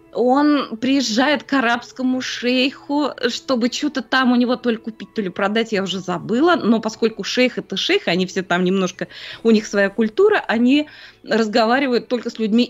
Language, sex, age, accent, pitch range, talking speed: Russian, female, 20-39, native, 195-250 Hz, 175 wpm